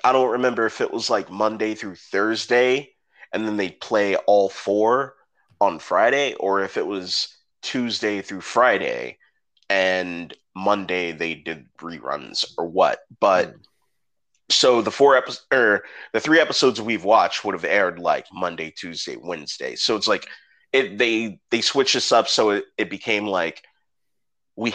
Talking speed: 160 wpm